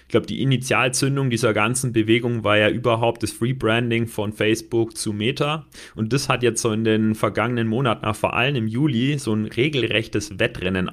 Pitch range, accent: 105-120 Hz, German